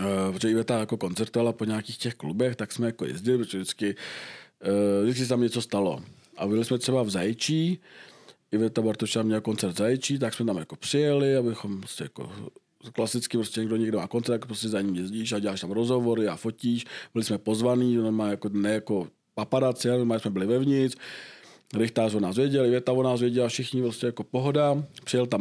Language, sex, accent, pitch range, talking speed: Czech, male, native, 105-125 Hz, 180 wpm